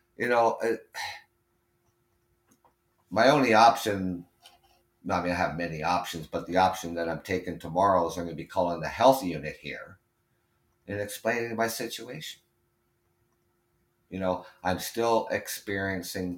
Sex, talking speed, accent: male, 145 wpm, American